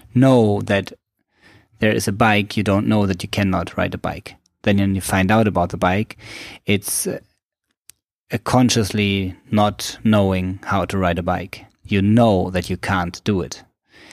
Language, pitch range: English, 95-110 Hz